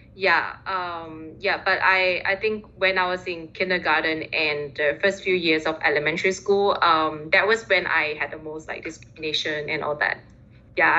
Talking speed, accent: 185 wpm, Malaysian